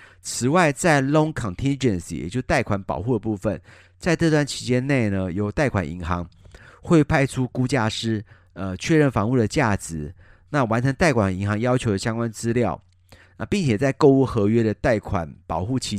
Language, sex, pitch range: Chinese, male, 95-135 Hz